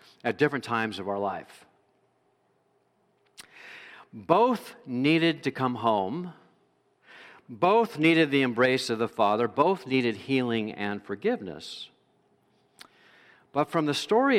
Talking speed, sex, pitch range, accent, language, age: 115 wpm, male, 120-175 Hz, American, English, 50-69